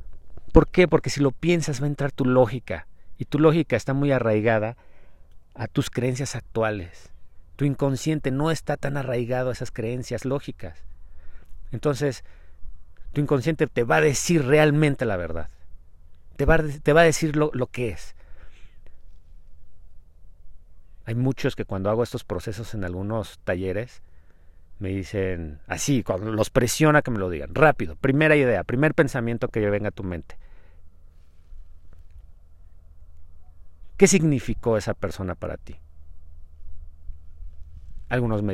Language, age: Spanish, 40-59